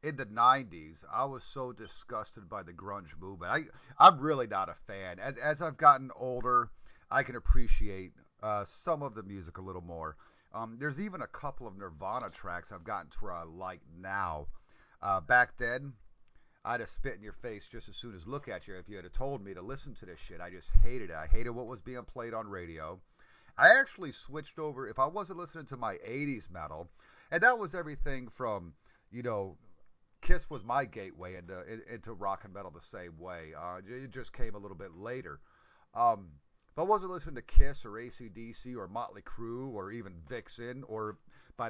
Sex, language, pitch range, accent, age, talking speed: male, English, 95-130 Hz, American, 40-59, 205 wpm